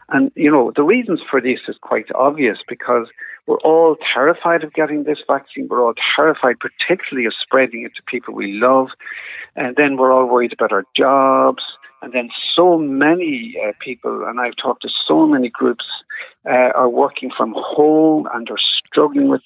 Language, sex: English, male